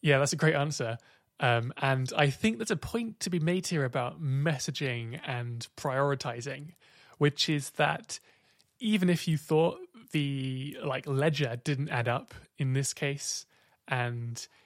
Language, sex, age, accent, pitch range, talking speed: English, male, 20-39, British, 130-155 Hz, 150 wpm